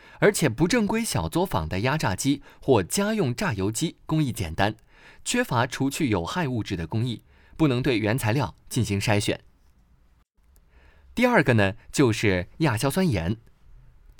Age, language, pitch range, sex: 20-39, Chinese, 105-170 Hz, male